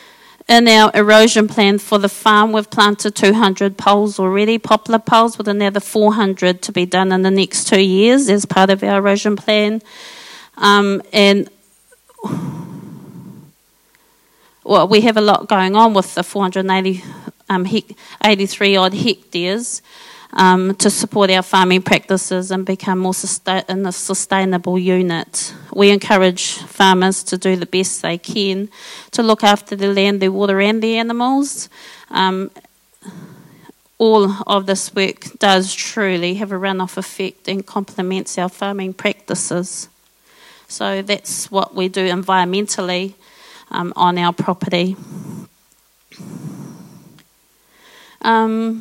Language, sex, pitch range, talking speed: English, female, 190-215 Hz, 130 wpm